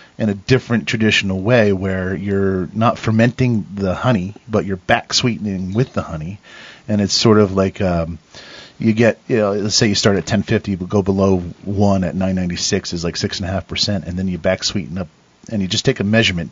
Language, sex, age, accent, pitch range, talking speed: English, male, 40-59, American, 85-105 Hz, 185 wpm